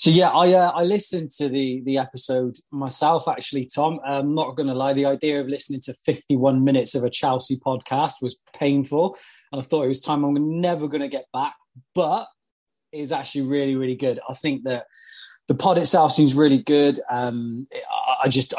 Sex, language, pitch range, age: male, English, 135-175 Hz, 20-39